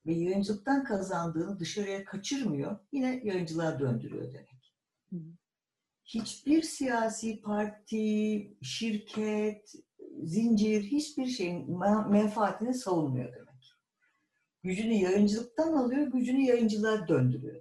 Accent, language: native, Turkish